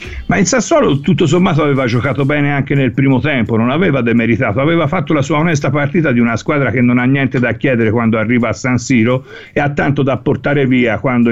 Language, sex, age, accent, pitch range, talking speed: Italian, male, 50-69, native, 120-150 Hz, 225 wpm